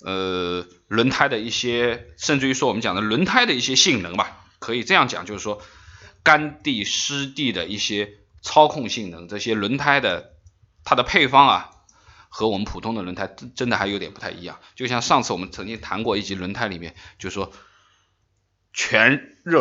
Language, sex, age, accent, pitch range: Chinese, male, 20-39, native, 95-125 Hz